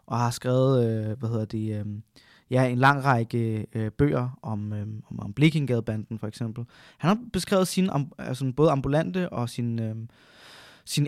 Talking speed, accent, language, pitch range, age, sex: 135 wpm, native, Danish, 130-170 Hz, 20-39, male